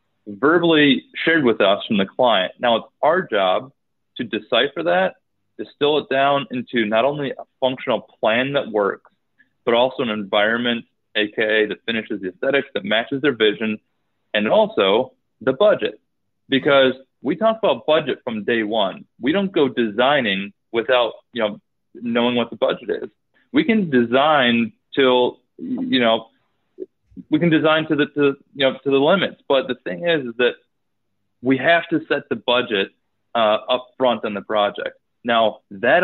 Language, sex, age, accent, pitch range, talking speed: English, male, 30-49, American, 110-150 Hz, 165 wpm